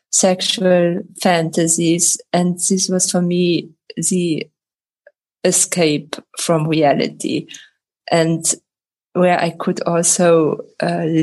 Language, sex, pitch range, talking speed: English, female, 170-195 Hz, 90 wpm